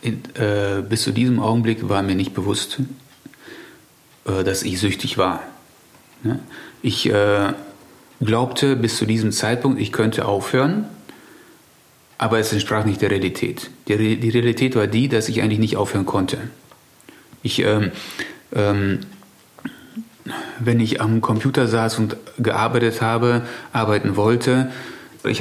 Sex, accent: male, German